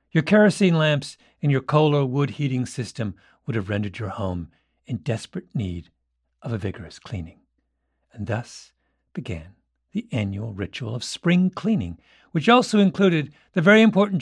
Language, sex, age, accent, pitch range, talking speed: English, male, 50-69, American, 110-170 Hz, 155 wpm